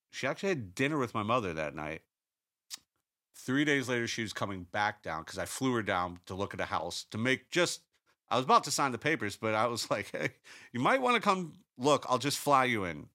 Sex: male